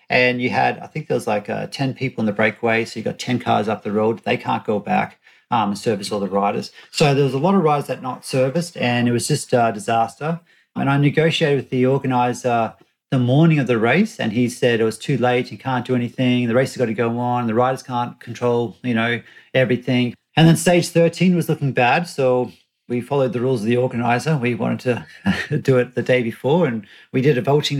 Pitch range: 120-145 Hz